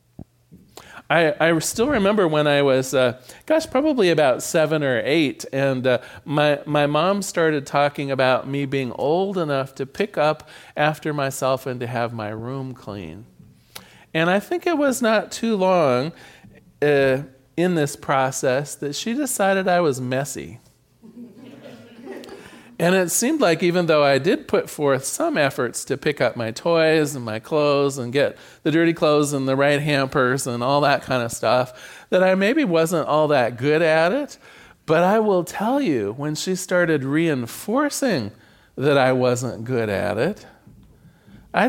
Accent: American